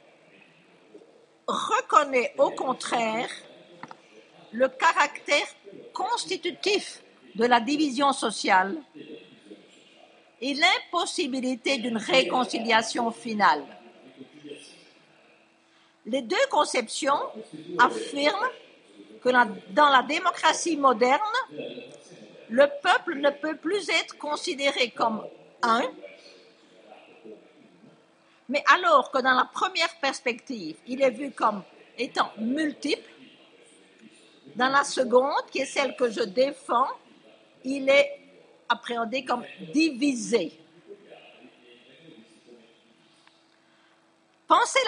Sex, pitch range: female, 250-330 Hz